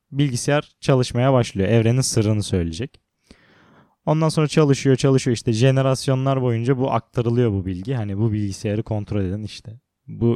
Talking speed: 140 wpm